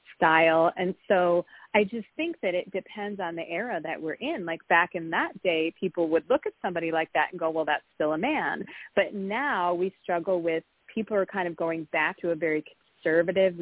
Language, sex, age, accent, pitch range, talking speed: English, female, 30-49, American, 165-205 Hz, 215 wpm